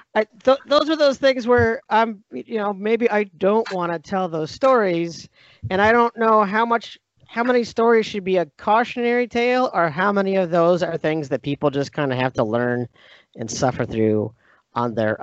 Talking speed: 195 wpm